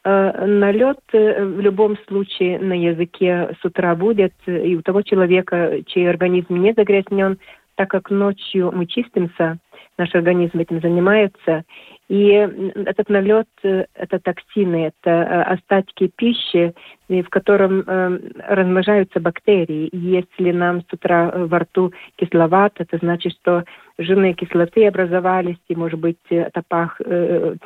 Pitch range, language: 175-200 Hz, Russian